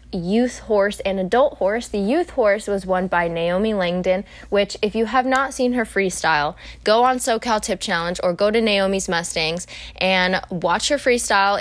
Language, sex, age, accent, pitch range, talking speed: English, female, 20-39, American, 175-215 Hz, 180 wpm